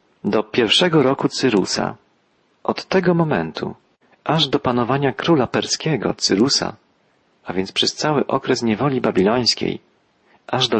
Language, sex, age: Polish, male, 40-59